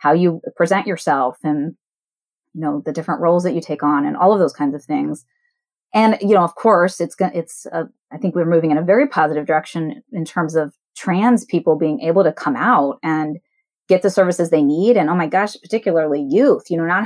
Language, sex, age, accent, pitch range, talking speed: English, female, 30-49, American, 155-215 Hz, 220 wpm